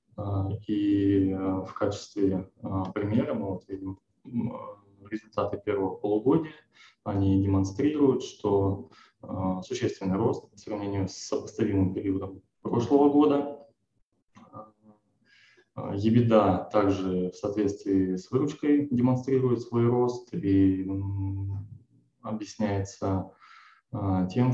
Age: 20-39